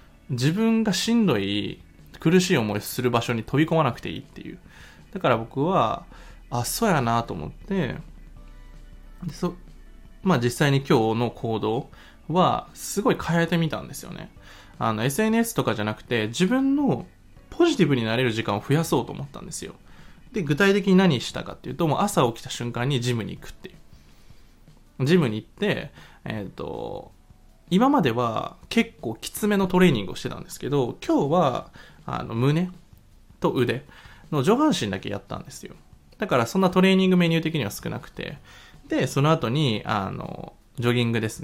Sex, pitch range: male, 115-185 Hz